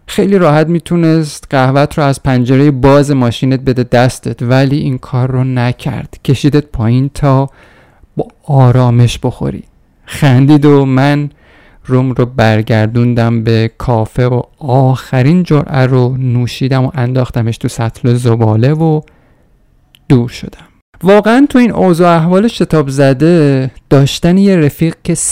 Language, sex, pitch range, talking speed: Persian, male, 120-150 Hz, 130 wpm